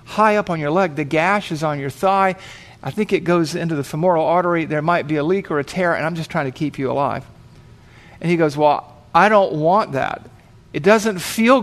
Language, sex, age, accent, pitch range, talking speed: English, male, 50-69, American, 145-200 Hz, 240 wpm